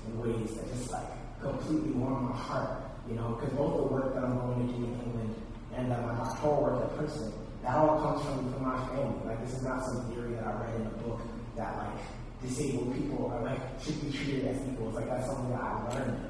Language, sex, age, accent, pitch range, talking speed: English, male, 30-49, American, 115-130 Hz, 240 wpm